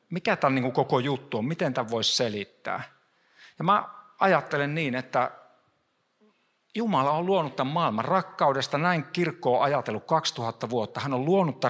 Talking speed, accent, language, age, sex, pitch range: 145 wpm, native, Finnish, 50-69, male, 120-155 Hz